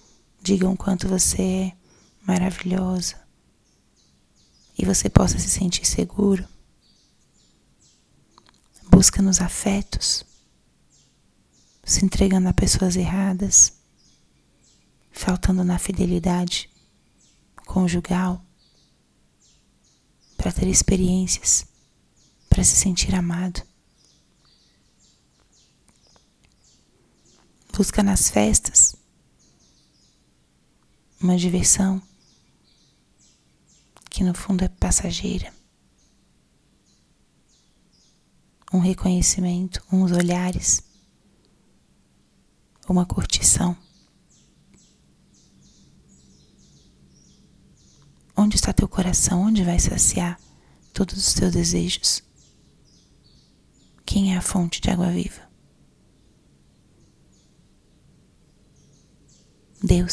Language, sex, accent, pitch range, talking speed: Portuguese, female, Brazilian, 170-190 Hz, 65 wpm